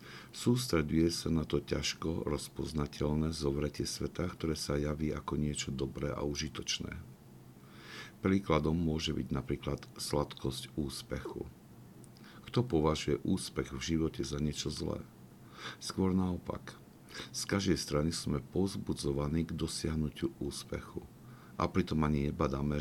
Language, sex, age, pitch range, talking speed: Slovak, male, 50-69, 70-80 Hz, 115 wpm